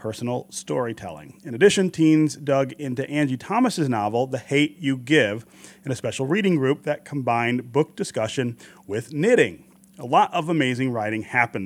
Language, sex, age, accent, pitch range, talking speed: English, male, 30-49, American, 120-155 Hz, 160 wpm